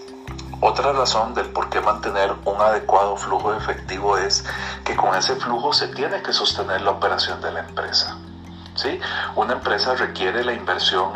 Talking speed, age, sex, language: 160 wpm, 50-69, male, Spanish